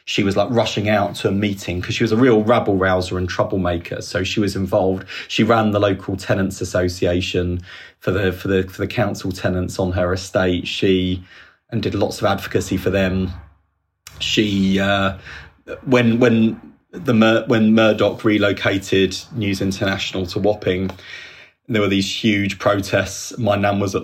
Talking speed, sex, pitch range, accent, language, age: 165 wpm, male, 95-110 Hz, British, English, 30-49